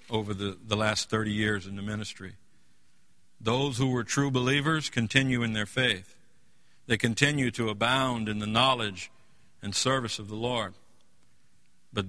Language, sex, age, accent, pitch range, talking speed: English, male, 60-79, American, 100-130 Hz, 155 wpm